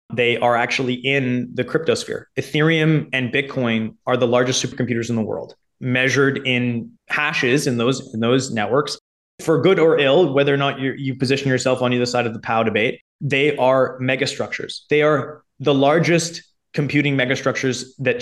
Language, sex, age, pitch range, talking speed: English, male, 20-39, 120-140 Hz, 170 wpm